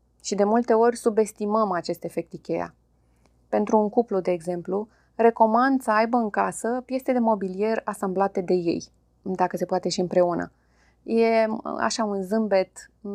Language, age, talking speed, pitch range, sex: Romanian, 20-39, 150 wpm, 175-220 Hz, female